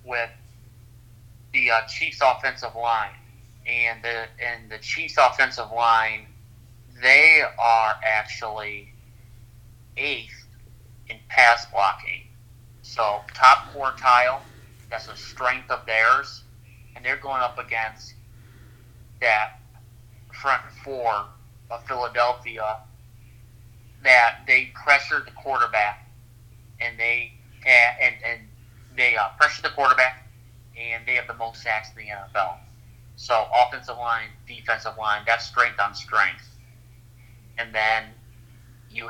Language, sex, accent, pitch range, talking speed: English, male, American, 115-120 Hz, 115 wpm